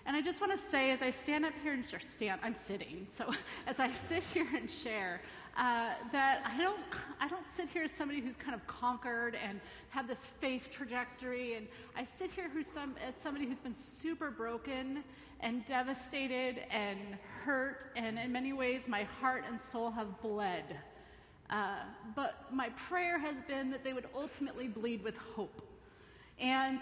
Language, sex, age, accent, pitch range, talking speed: English, female, 30-49, American, 230-275 Hz, 175 wpm